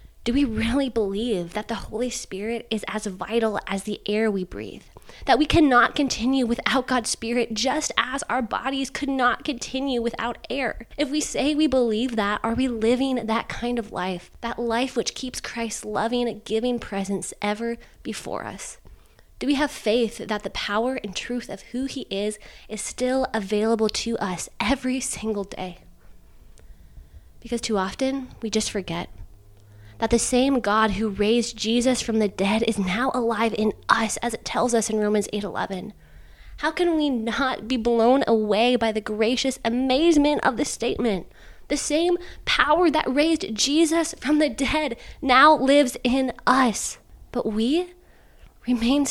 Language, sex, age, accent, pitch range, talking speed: English, female, 20-39, American, 210-260 Hz, 165 wpm